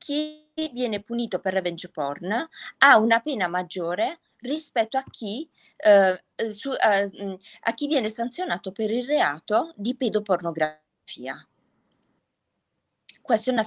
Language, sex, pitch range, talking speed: Italian, female, 175-235 Hz, 105 wpm